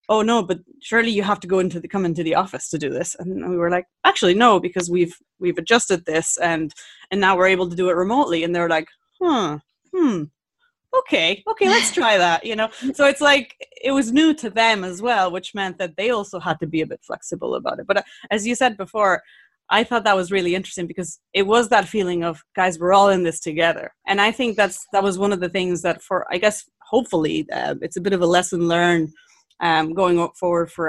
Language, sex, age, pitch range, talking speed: English, female, 20-39, 165-215 Hz, 240 wpm